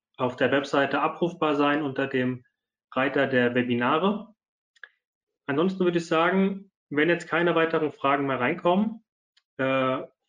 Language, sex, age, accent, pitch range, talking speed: German, male, 30-49, German, 130-175 Hz, 130 wpm